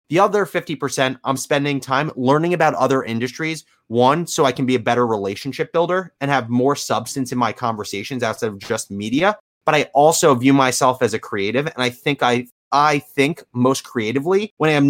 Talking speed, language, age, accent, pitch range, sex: 195 wpm, English, 30-49, American, 125-150 Hz, male